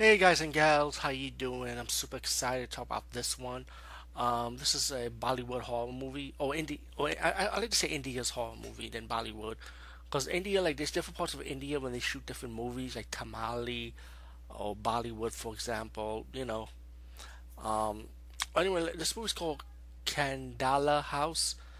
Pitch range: 110-135 Hz